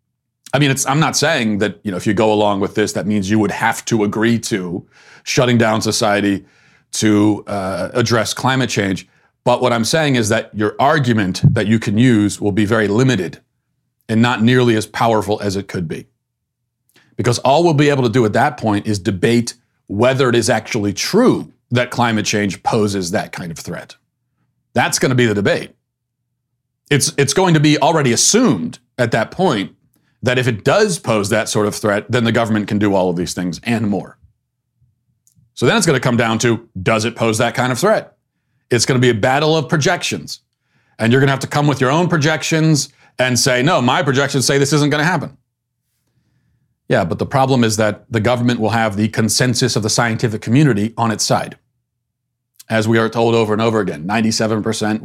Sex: male